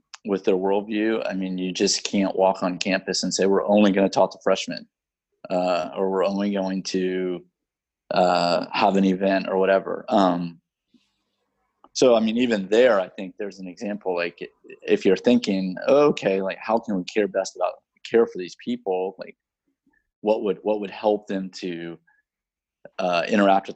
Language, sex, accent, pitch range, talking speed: English, male, American, 95-110 Hz, 175 wpm